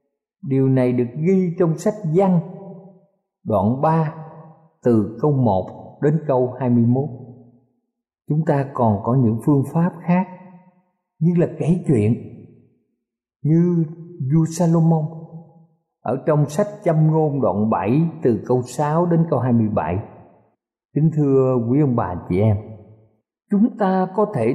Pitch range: 130-180 Hz